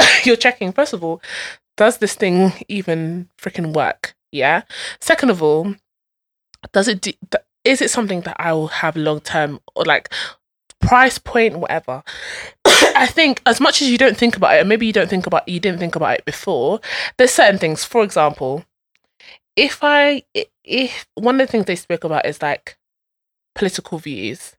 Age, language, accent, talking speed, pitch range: 20-39, English, British, 180 wpm, 170-240 Hz